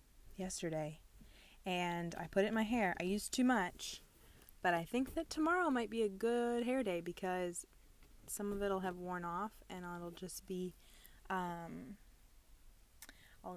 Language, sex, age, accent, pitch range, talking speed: English, female, 20-39, American, 180-225 Hz, 160 wpm